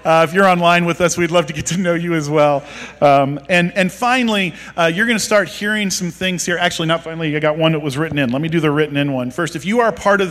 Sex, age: male, 40-59